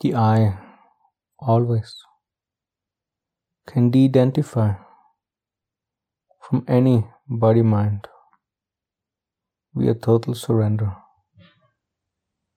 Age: 50-69